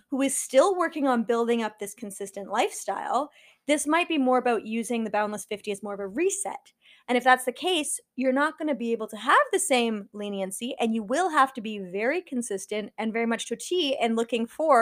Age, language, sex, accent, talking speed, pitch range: 20-39, English, female, American, 225 wpm, 220-290 Hz